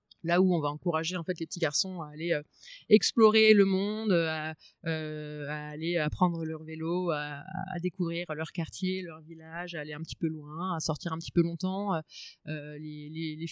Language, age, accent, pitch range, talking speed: French, 30-49, French, 155-190 Hz, 200 wpm